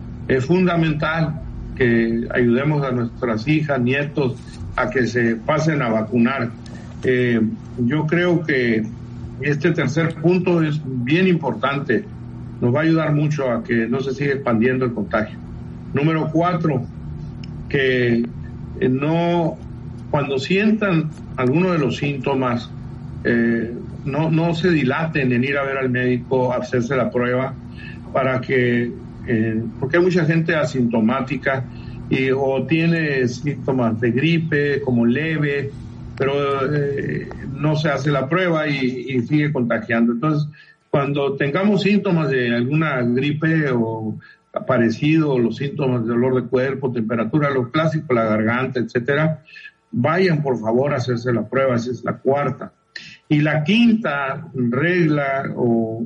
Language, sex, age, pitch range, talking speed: Spanish, male, 50-69, 120-155 Hz, 135 wpm